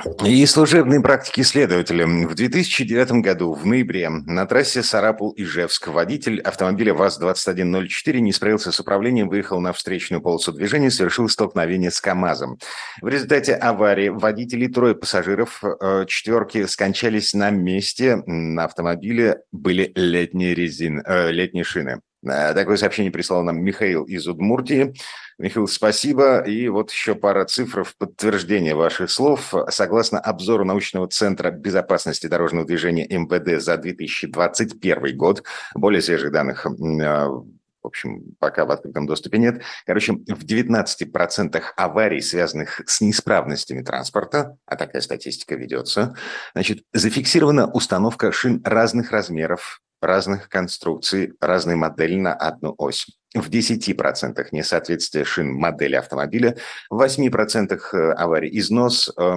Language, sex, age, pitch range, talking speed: Russian, male, 50-69, 90-115 Hz, 120 wpm